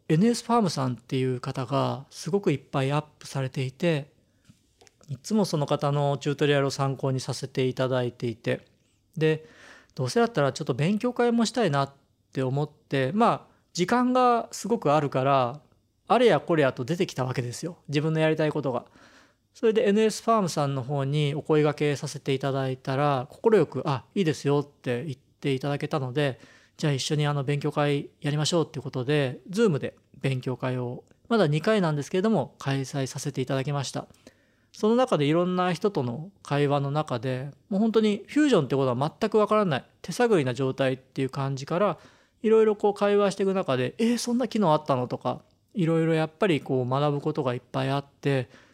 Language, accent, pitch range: Japanese, native, 130-175 Hz